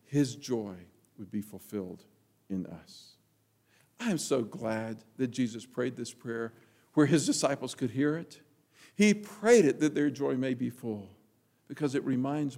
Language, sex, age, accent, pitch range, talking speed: English, male, 50-69, American, 110-140 Hz, 160 wpm